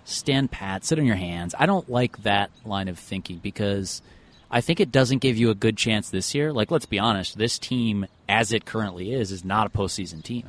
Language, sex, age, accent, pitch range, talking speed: English, male, 30-49, American, 100-125 Hz, 230 wpm